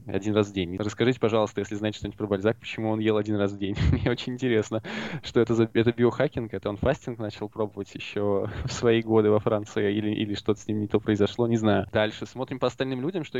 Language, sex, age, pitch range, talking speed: Russian, male, 20-39, 100-120 Hz, 235 wpm